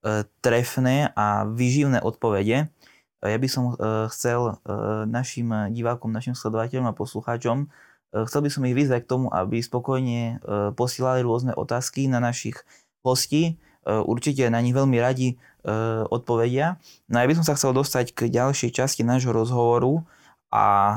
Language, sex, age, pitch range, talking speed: Slovak, male, 20-39, 115-135 Hz, 135 wpm